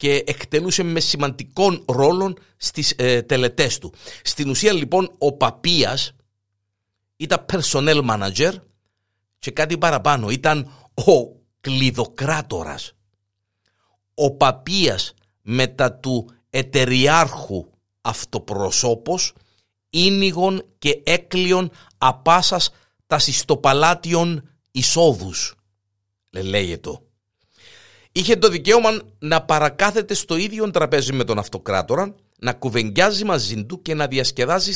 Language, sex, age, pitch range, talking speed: Greek, male, 50-69, 115-175 Hz, 100 wpm